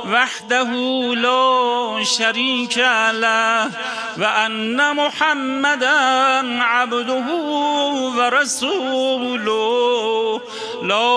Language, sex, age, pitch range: Persian, male, 40-59, 220-265 Hz